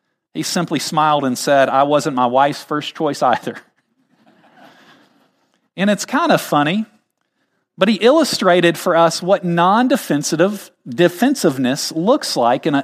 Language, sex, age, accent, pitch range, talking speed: English, male, 40-59, American, 155-220 Hz, 140 wpm